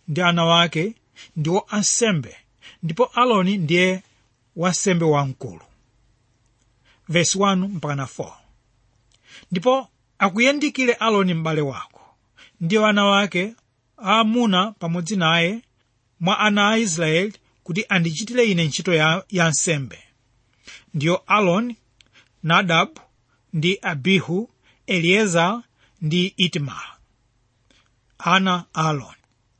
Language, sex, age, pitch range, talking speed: English, male, 30-49, 140-210 Hz, 85 wpm